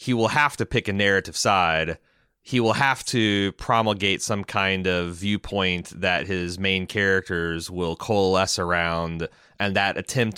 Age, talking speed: 30-49, 155 wpm